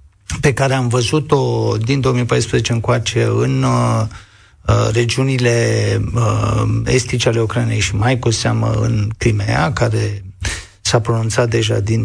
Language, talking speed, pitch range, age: Romanian, 130 wpm, 110-135 Hz, 50-69